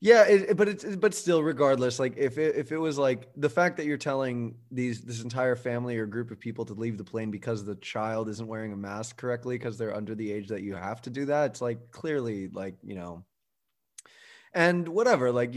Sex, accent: male, American